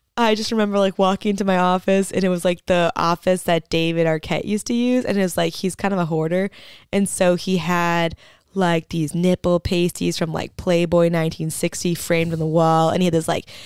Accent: American